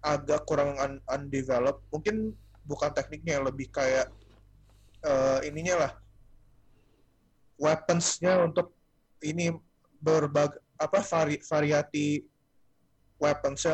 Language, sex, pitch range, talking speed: Indonesian, male, 125-150 Hz, 85 wpm